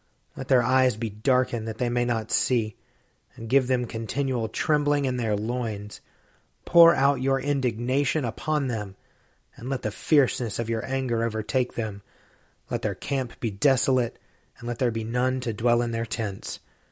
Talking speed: 170 wpm